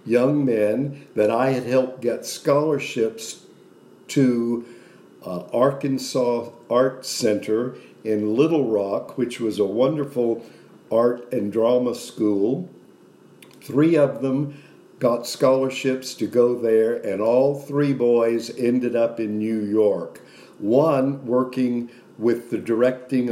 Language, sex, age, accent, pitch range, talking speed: English, male, 50-69, American, 110-130 Hz, 120 wpm